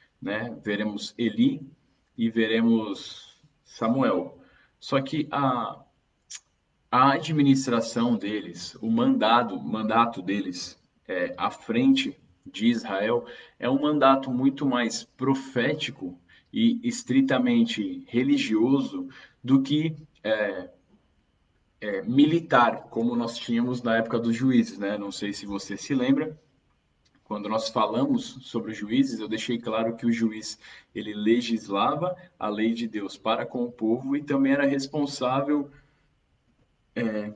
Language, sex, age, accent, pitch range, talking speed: Portuguese, male, 10-29, Brazilian, 110-145 Hz, 115 wpm